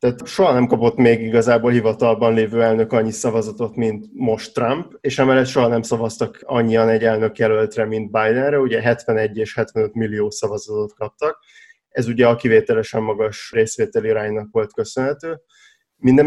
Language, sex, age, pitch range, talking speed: Hungarian, male, 20-39, 115-130 Hz, 155 wpm